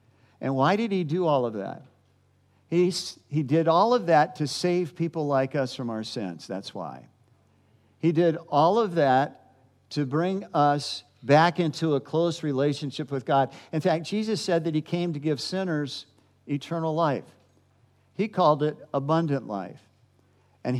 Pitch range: 125-170 Hz